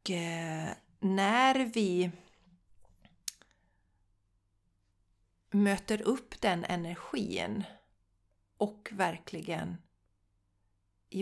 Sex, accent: female, native